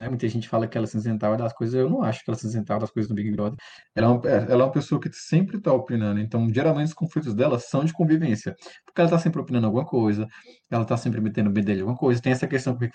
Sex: male